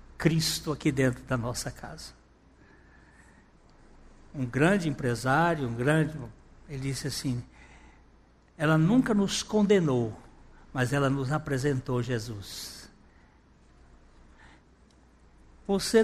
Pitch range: 130-200 Hz